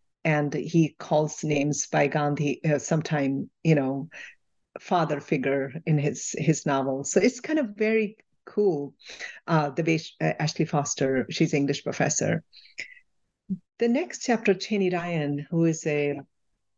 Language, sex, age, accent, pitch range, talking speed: English, female, 50-69, Indian, 150-205 Hz, 135 wpm